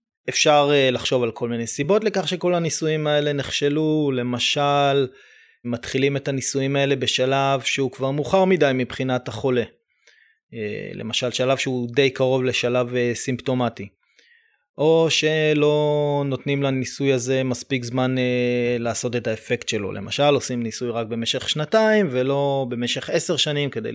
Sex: male